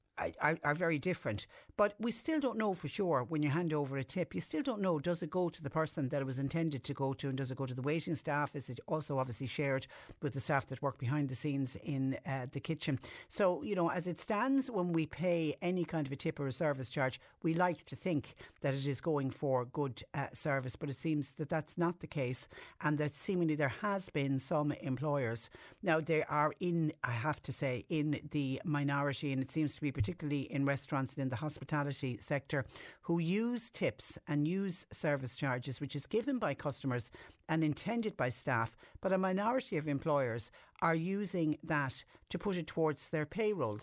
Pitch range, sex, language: 135-165 Hz, female, English